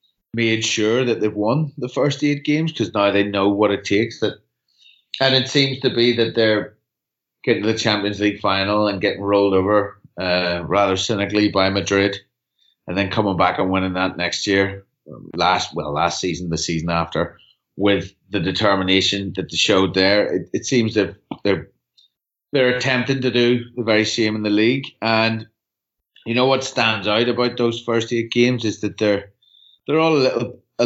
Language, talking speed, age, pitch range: English, 185 wpm, 30-49, 100-115 Hz